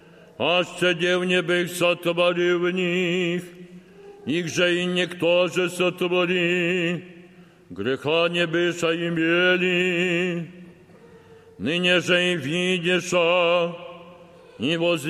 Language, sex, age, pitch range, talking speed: Polish, male, 60-79, 175-185 Hz, 105 wpm